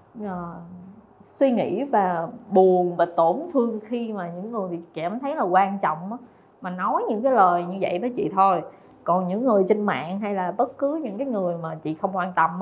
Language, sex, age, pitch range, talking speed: Vietnamese, female, 20-39, 185-250 Hz, 220 wpm